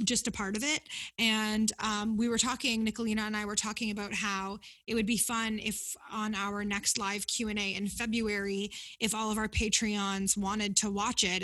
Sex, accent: female, American